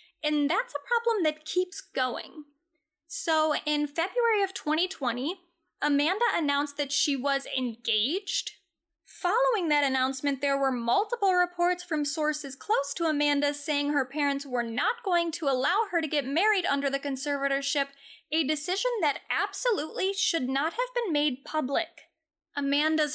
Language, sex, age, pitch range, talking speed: English, female, 10-29, 280-365 Hz, 145 wpm